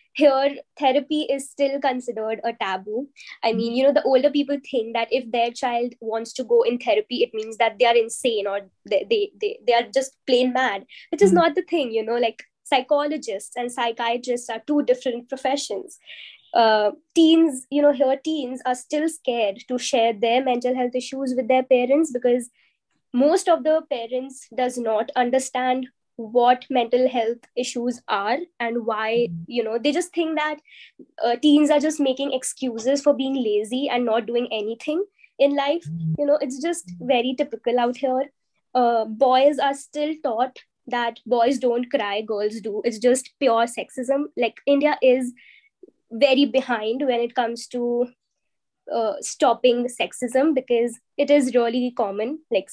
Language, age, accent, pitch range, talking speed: English, 20-39, Indian, 235-280 Hz, 170 wpm